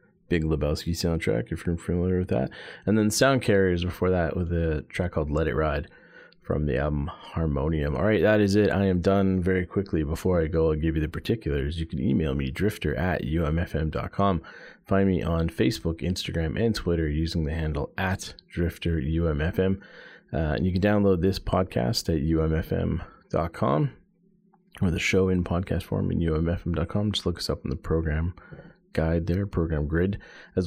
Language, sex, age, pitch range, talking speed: English, male, 30-49, 80-95 Hz, 180 wpm